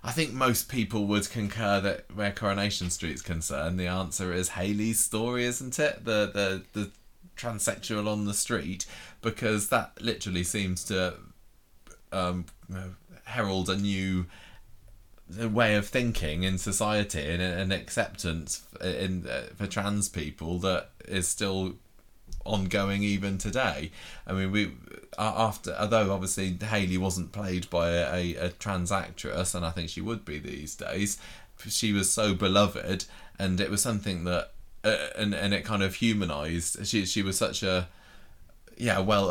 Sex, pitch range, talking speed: male, 90-105 Hz, 150 wpm